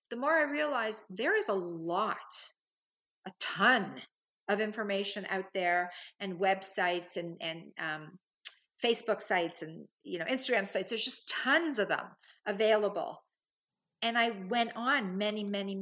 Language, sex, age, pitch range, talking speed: English, female, 50-69, 180-220 Hz, 145 wpm